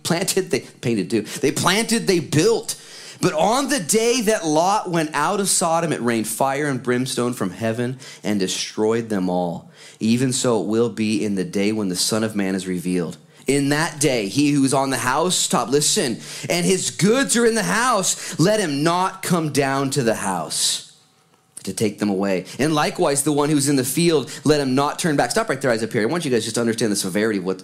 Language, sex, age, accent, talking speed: English, male, 30-49, American, 225 wpm